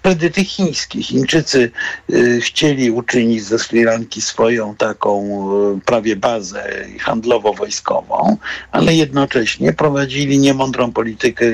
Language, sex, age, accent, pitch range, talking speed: Polish, male, 60-79, native, 120-140 Hz, 105 wpm